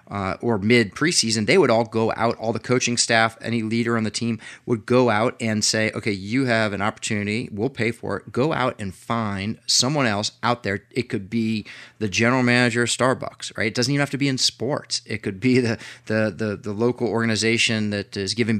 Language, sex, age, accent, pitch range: Japanese, male, 30-49, American, 105-120 Hz